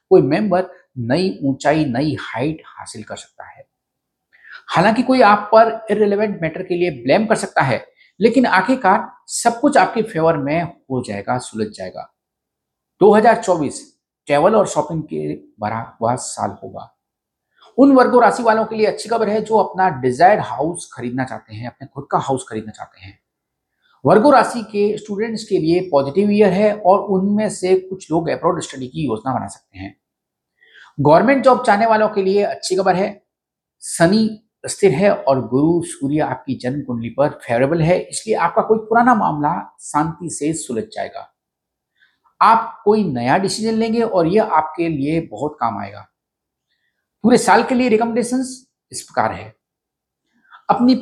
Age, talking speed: 50-69, 160 wpm